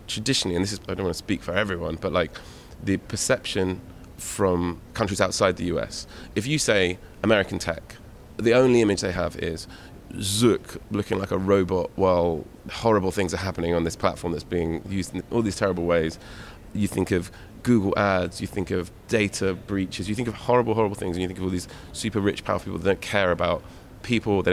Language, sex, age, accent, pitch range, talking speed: English, male, 20-39, British, 90-110 Hz, 205 wpm